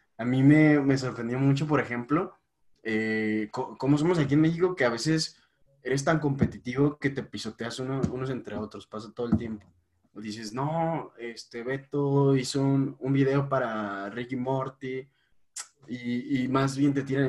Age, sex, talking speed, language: 20-39, male, 170 wpm, Spanish